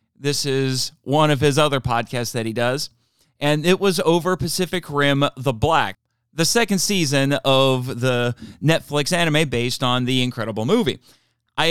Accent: American